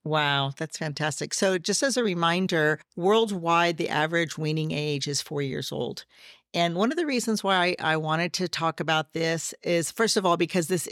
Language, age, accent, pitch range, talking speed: English, 50-69, American, 155-180 Hz, 190 wpm